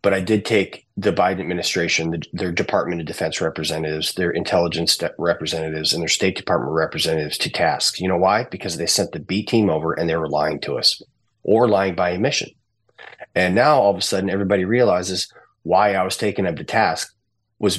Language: English